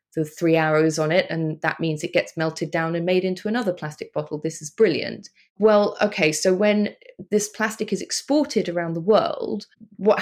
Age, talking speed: 20-39, 195 wpm